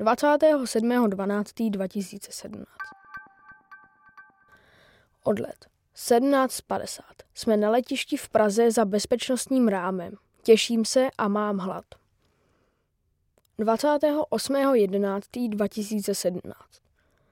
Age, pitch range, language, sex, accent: 20-39, 210-255 Hz, Czech, female, native